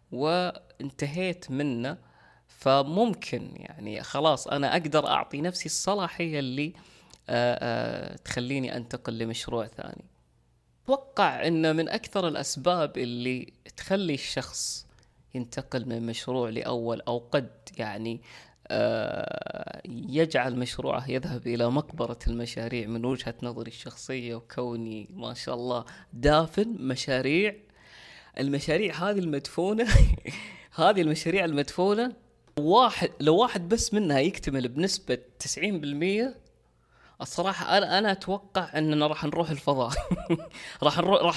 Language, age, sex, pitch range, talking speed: Arabic, 20-39, female, 120-175 Hz, 105 wpm